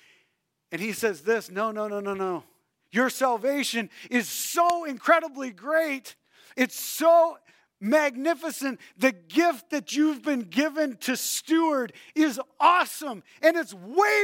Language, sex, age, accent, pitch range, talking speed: English, male, 40-59, American, 170-255 Hz, 130 wpm